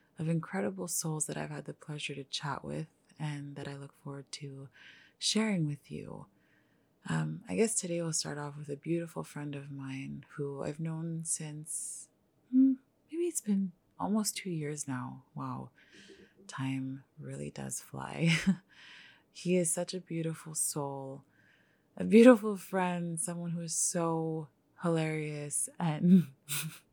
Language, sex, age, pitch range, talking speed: English, female, 20-39, 140-175 Hz, 145 wpm